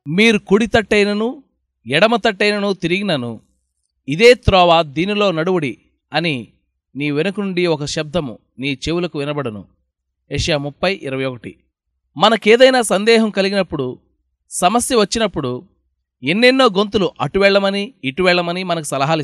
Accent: native